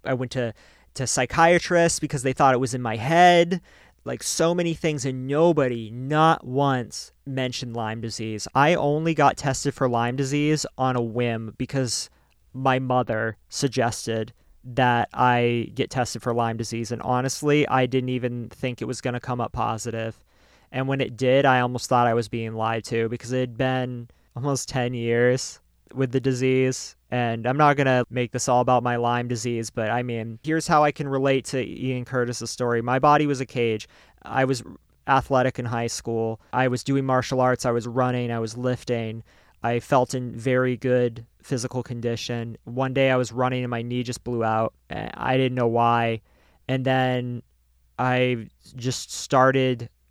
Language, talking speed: English, 185 wpm